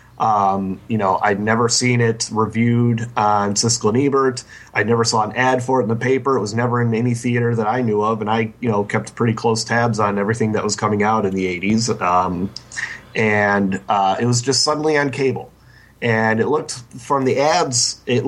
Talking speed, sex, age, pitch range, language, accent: 215 wpm, male, 30-49, 105-125 Hz, English, American